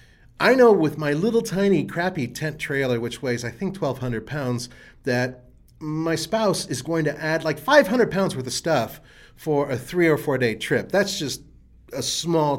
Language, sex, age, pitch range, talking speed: English, male, 30-49, 115-150 Hz, 185 wpm